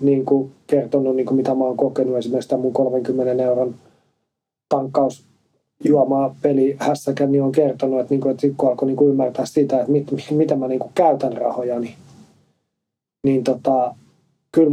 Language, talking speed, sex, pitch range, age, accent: Finnish, 160 wpm, male, 130-150 Hz, 30-49, native